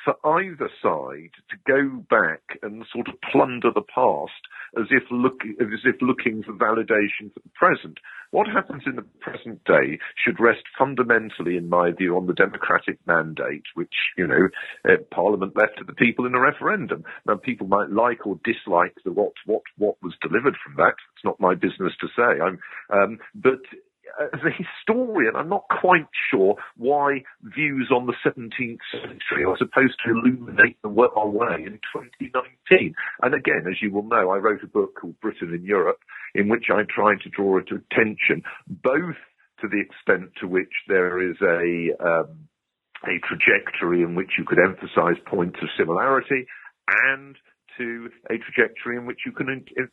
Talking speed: 180 wpm